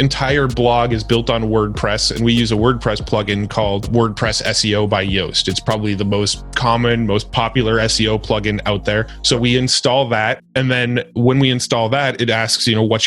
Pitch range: 110-120 Hz